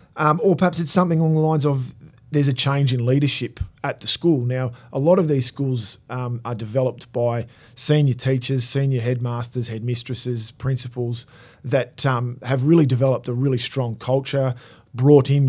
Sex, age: male, 40-59